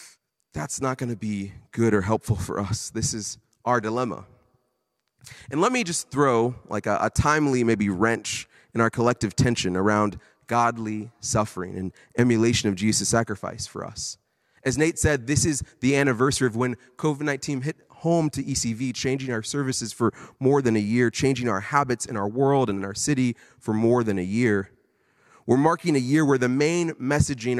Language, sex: English, male